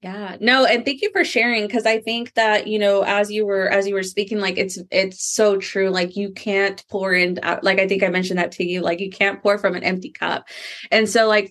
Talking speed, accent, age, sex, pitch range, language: 255 wpm, American, 20-39, female, 180-210 Hz, English